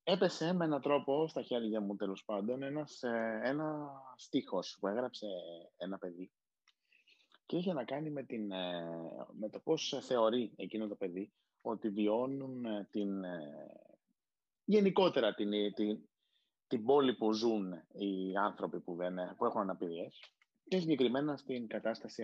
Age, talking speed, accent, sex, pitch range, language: 30-49, 135 wpm, native, male, 105-150 Hz, Greek